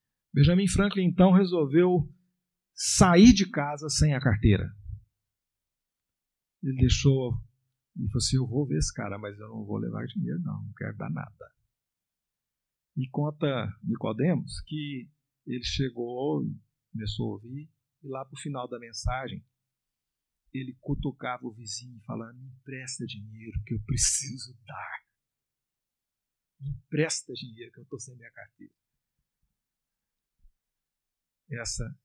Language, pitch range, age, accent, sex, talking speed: Portuguese, 110-150 Hz, 50-69, Brazilian, male, 130 wpm